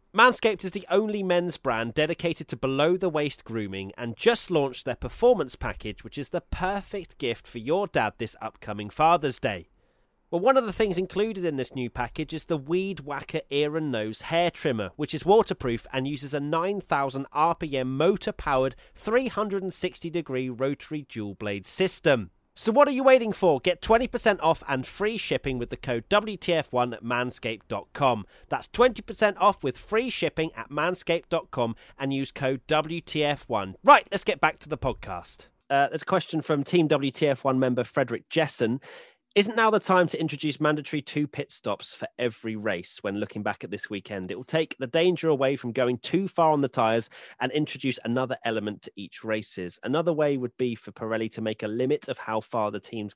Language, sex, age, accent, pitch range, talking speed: English, male, 30-49, British, 115-175 Hz, 180 wpm